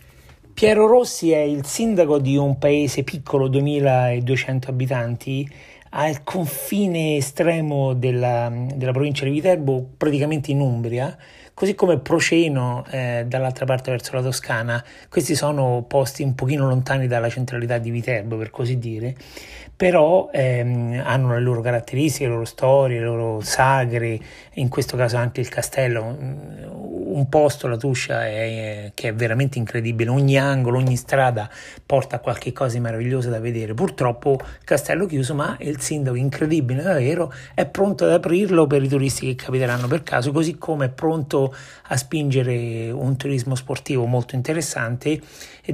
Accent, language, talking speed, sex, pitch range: native, Italian, 150 wpm, male, 120-145 Hz